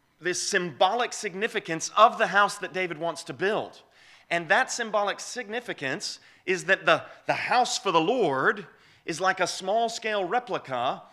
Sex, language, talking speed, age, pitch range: male, English, 155 wpm, 30-49, 150-200 Hz